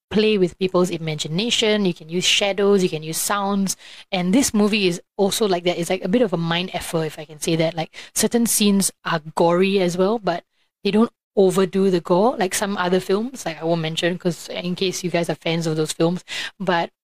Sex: female